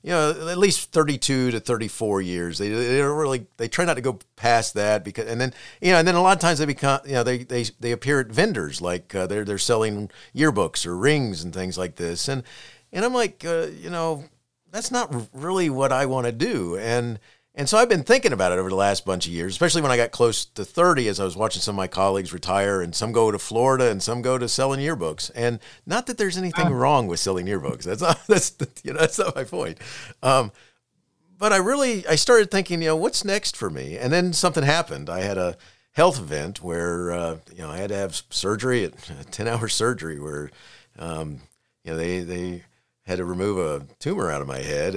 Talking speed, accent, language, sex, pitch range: 235 wpm, American, English, male, 95-145 Hz